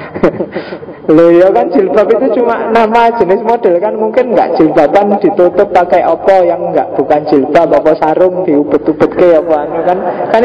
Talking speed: 155 wpm